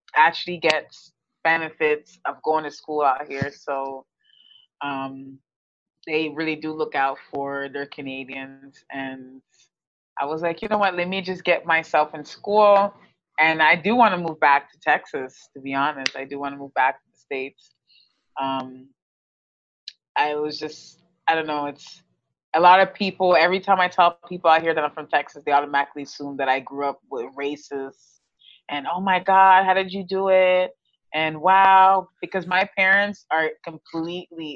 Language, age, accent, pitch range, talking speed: English, 20-39, American, 145-195 Hz, 175 wpm